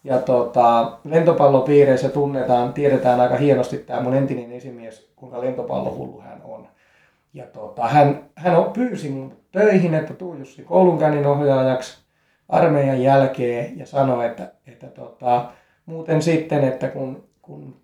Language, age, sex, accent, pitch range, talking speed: Finnish, 20-39, male, native, 130-155 Hz, 130 wpm